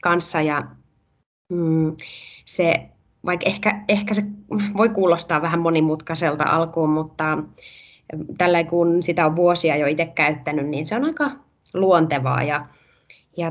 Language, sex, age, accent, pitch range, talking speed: Finnish, female, 20-39, native, 155-200 Hz, 130 wpm